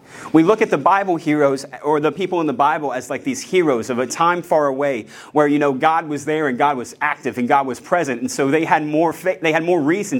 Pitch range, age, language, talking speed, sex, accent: 135-175 Hz, 30-49, English, 265 wpm, male, American